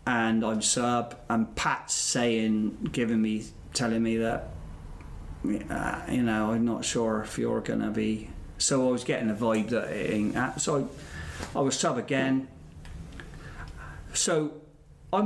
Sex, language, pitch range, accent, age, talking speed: male, English, 120-165 Hz, British, 40-59, 155 wpm